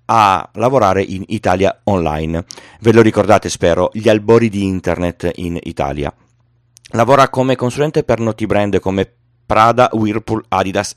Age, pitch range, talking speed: 30-49, 95-120 Hz, 135 wpm